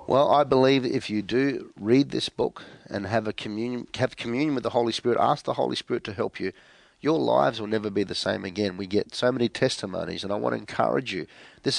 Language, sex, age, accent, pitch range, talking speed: English, male, 40-59, Australian, 105-125 Hz, 235 wpm